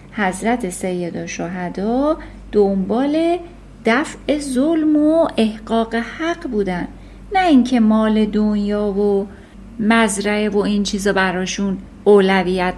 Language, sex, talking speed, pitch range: Persian, female, 100 wpm, 205-300 Hz